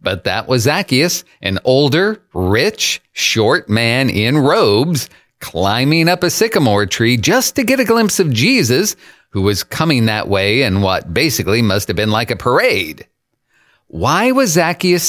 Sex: male